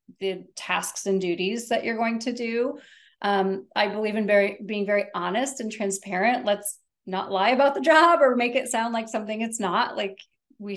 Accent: American